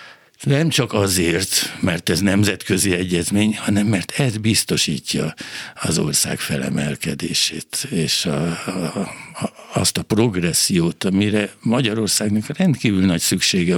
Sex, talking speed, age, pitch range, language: male, 100 wpm, 60-79, 85-110 Hz, Hungarian